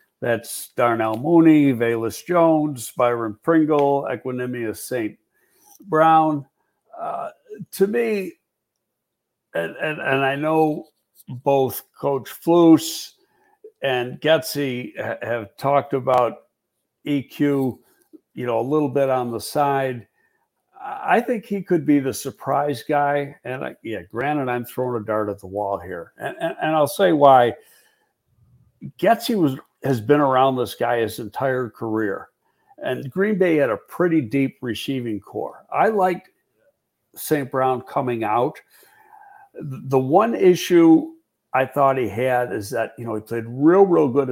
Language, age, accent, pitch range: English, 60-79, American, 125-165 Hz